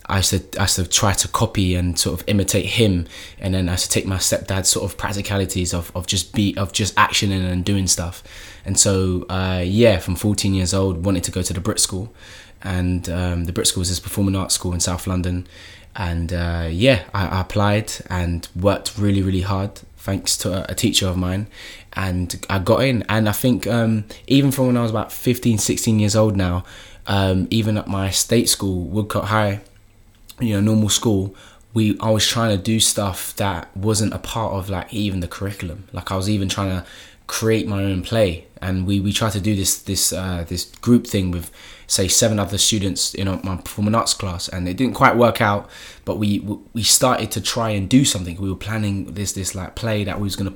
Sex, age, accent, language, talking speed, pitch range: male, 20-39, British, English, 220 wpm, 90-110 Hz